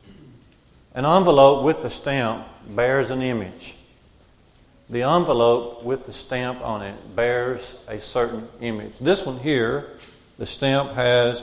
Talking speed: 130 wpm